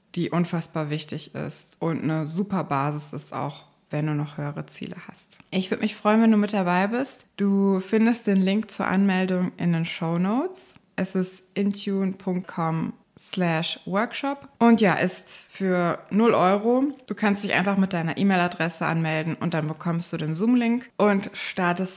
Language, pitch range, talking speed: German, 165-200 Hz, 170 wpm